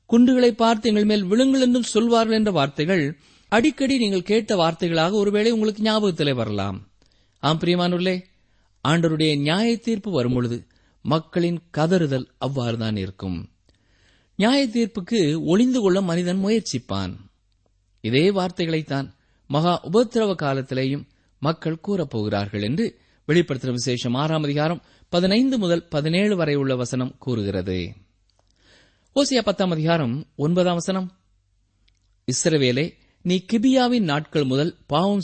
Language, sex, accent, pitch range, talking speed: Tamil, male, native, 120-195 Hz, 100 wpm